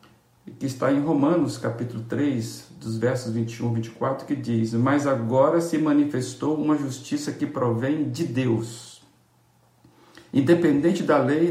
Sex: male